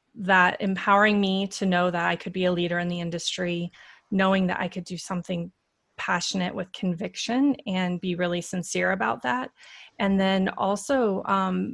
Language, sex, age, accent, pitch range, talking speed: English, female, 20-39, American, 180-200 Hz, 170 wpm